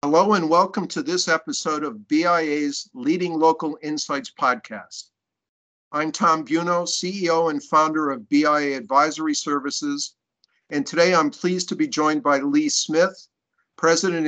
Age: 50-69